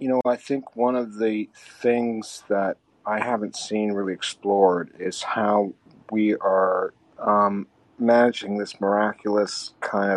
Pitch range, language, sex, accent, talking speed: 100-120 Hz, English, male, American, 135 wpm